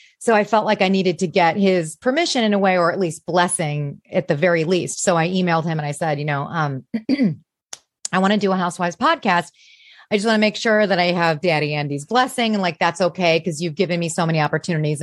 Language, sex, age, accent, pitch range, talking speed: English, female, 30-49, American, 165-205 Hz, 245 wpm